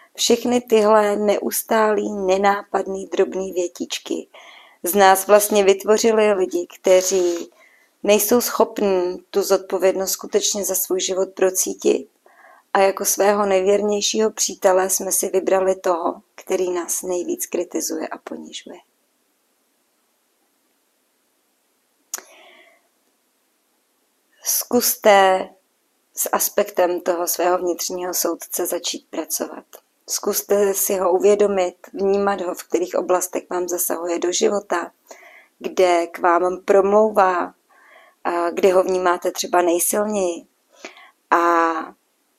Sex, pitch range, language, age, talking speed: female, 180-205 Hz, Czech, 30-49, 95 wpm